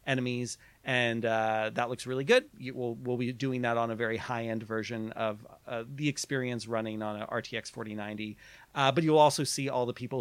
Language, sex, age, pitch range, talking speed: English, male, 40-59, 115-135 Hz, 205 wpm